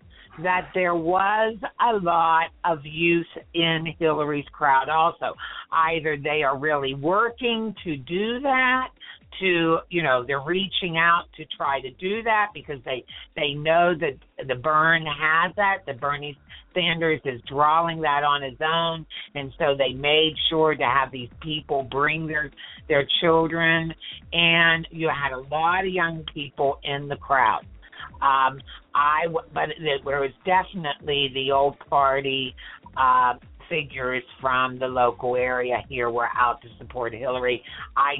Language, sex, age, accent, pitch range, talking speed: English, female, 50-69, American, 130-165 Hz, 150 wpm